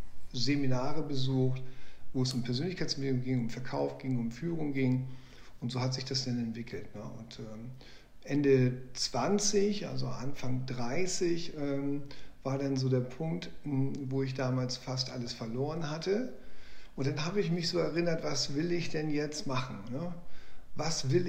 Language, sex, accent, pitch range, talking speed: German, male, German, 130-155 Hz, 150 wpm